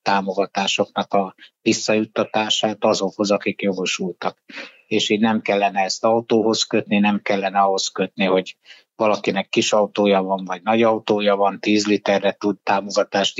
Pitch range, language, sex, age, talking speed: 100-110 Hz, Hungarian, male, 60-79, 135 wpm